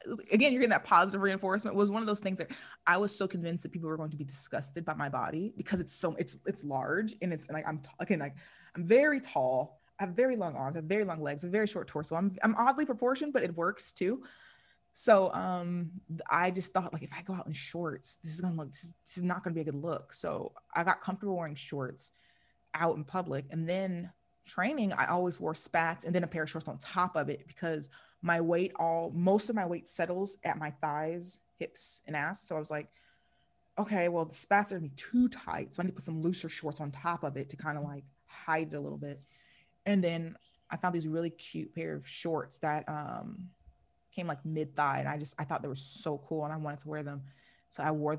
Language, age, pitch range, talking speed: English, 20-39, 150-185 Hz, 245 wpm